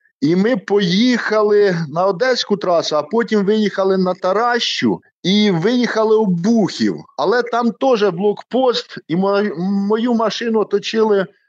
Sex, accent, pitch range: male, native, 155-205 Hz